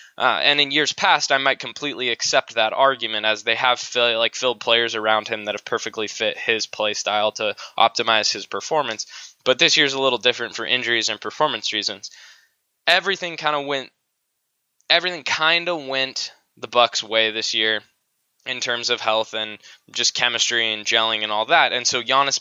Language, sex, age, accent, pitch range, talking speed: English, male, 10-29, American, 115-140 Hz, 190 wpm